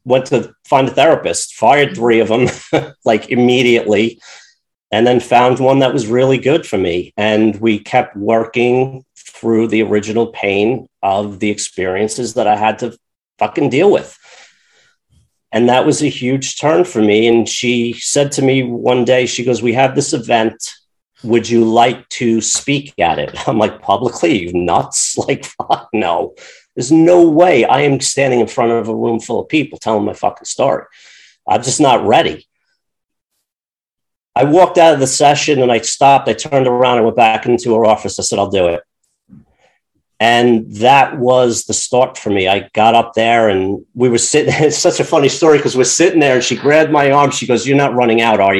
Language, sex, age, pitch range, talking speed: English, male, 40-59, 110-130 Hz, 195 wpm